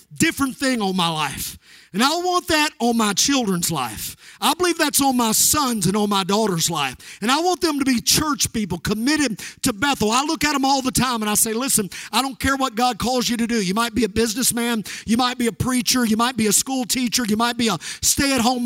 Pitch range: 200-255 Hz